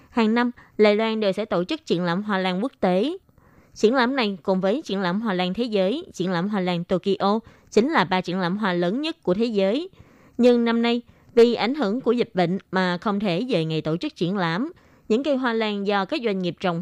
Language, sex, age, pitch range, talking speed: Vietnamese, female, 20-39, 180-235 Hz, 245 wpm